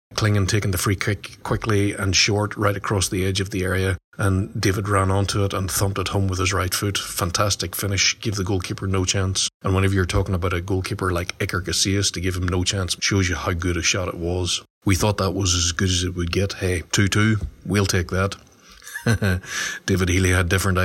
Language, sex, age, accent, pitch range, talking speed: English, male, 30-49, Irish, 95-100 Hz, 225 wpm